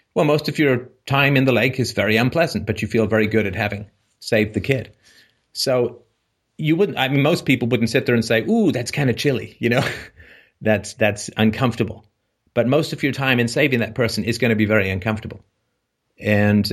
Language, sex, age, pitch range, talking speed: English, male, 30-49, 110-135 Hz, 210 wpm